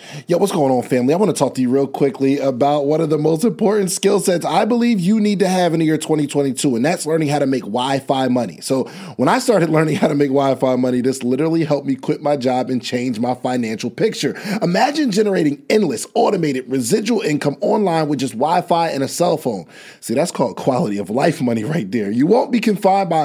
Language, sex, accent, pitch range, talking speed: English, male, American, 140-205 Hz, 230 wpm